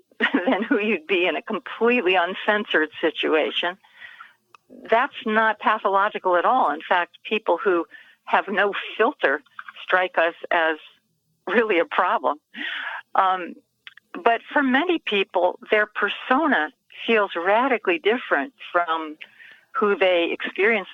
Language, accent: English, American